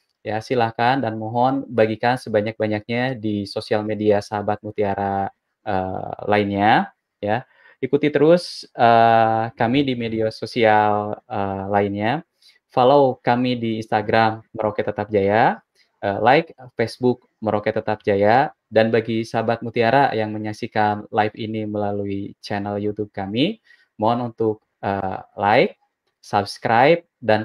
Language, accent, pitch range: Indonesian, native, 105-120 Hz